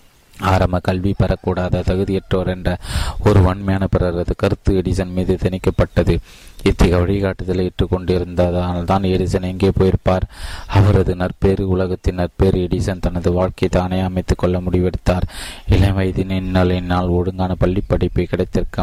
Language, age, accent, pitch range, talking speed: Tamil, 20-39, native, 90-95 Hz, 115 wpm